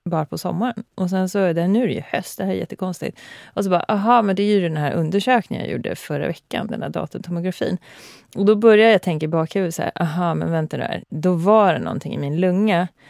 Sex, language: female, Swedish